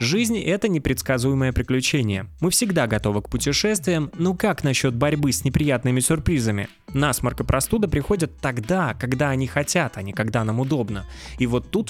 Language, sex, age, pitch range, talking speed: Russian, male, 20-39, 115-150 Hz, 160 wpm